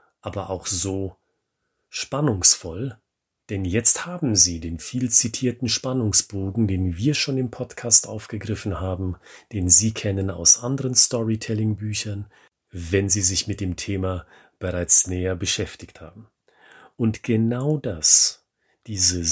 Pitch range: 95-130 Hz